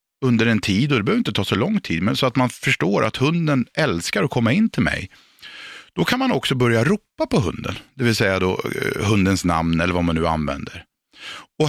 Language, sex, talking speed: Swedish, male, 230 wpm